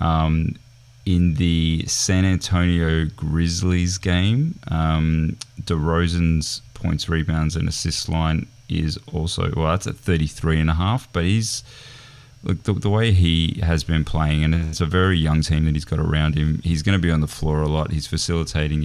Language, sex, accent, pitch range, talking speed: English, male, Australian, 80-100 Hz, 175 wpm